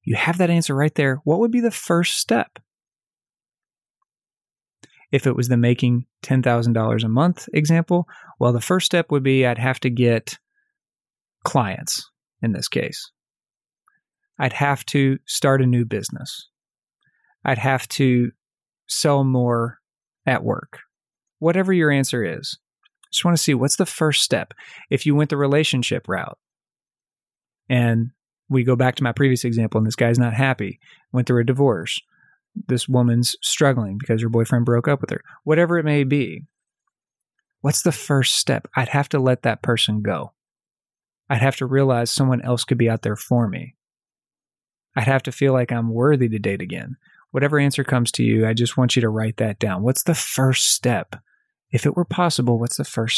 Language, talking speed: English, 175 wpm